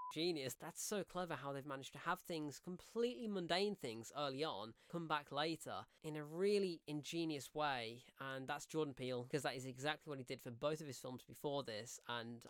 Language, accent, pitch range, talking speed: English, British, 125-160 Hz, 200 wpm